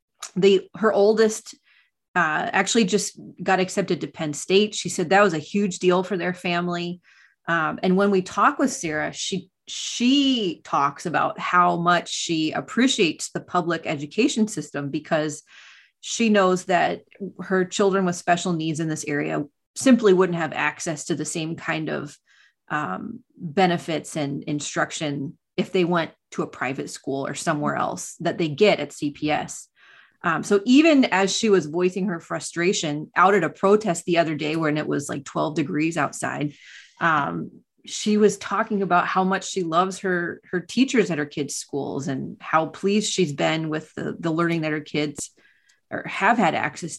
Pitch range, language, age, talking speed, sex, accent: 160-205 Hz, English, 30-49, 170 wpm, female, American